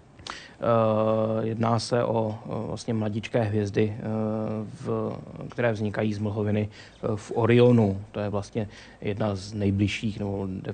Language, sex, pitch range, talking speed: Czech, male, 105-115 Hz, 105 wpm